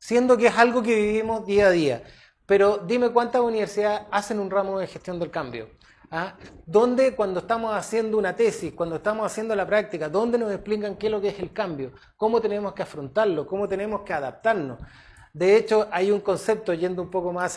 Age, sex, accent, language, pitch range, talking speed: 30-49, male, Argentinian, Spanish, 180-225 Hz, 200 wpm